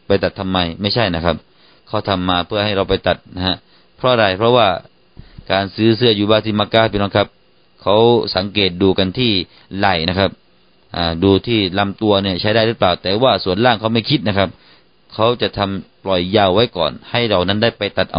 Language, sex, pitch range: Thai, male, 95-115 Hz